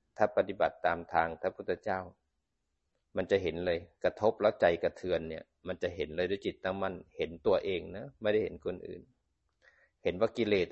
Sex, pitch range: male, 90-110 Hz